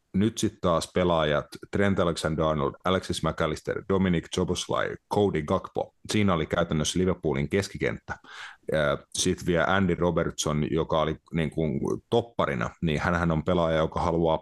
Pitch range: 80-100 Hz